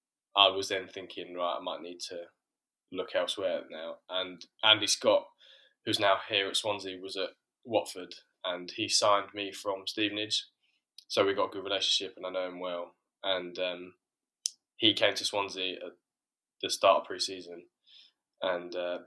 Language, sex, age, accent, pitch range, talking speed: English, male, 10-29, British, 90-95 Hz, 165 wpm